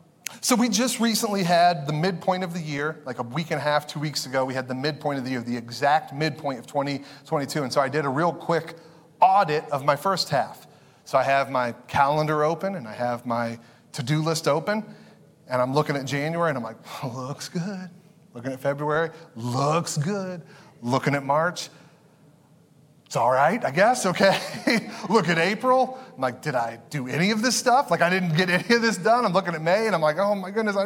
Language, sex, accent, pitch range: English, male, American, 145-180 Hz